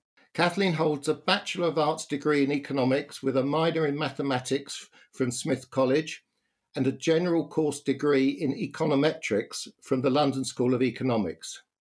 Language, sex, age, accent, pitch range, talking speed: English, male, 60-79, British, 135-160 Hz, 150 wpm